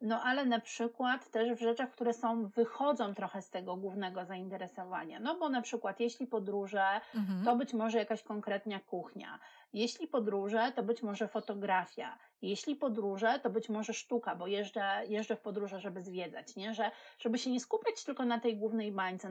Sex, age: female, 30-49